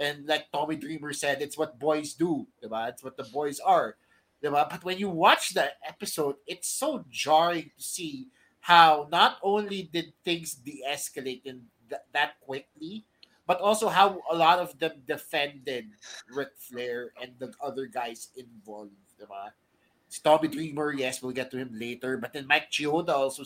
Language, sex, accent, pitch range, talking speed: English, male, Filipino, 145-205 Hz, 170 wpm